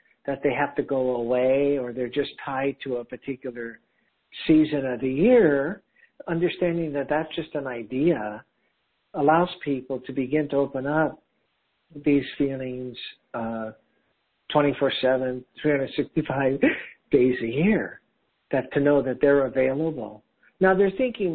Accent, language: American, English